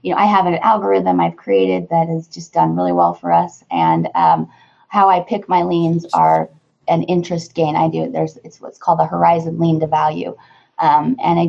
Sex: female